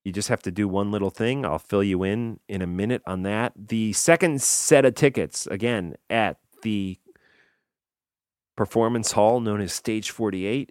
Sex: male